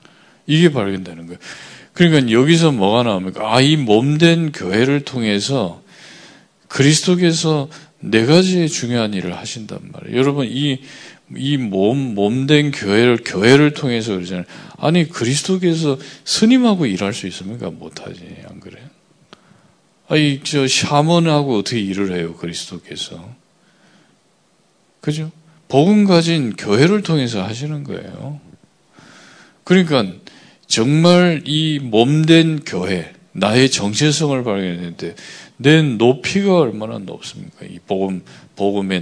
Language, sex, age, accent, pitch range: Korean, male, 40-59, native, 100-155 Hz